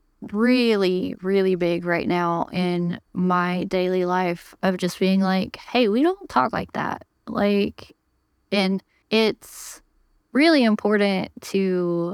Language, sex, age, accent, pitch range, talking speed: English, female, 10-29, American, 180-220 Hz, 125 wpm